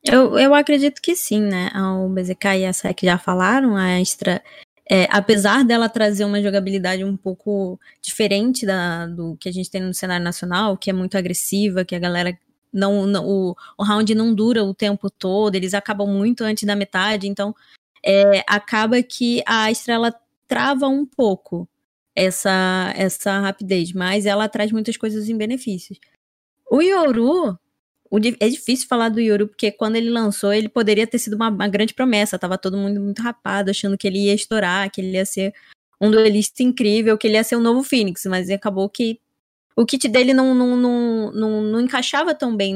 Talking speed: 190 wpm